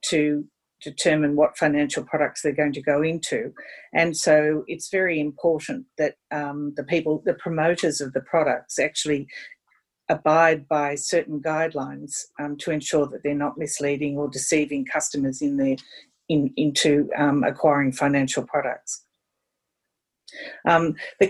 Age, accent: 50-69, Australian